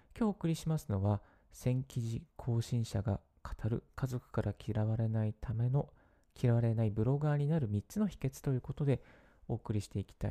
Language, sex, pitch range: Japanese, male, 100-135 Hz